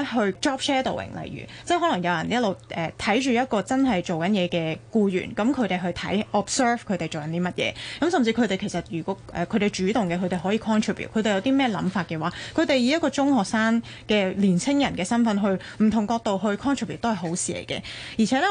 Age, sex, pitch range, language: 20-39, female, 185-245 Hz, Chinese